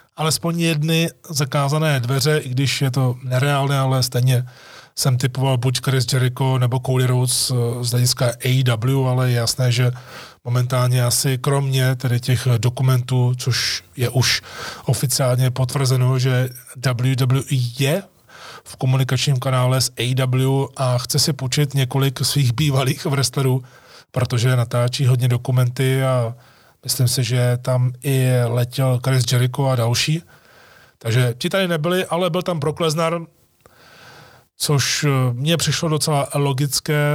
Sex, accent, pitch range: male, native, 125-145 Hz